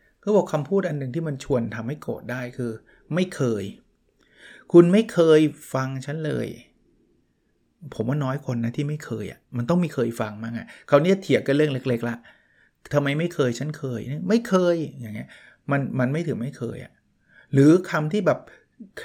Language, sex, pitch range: Thai, male, 120-165 Hz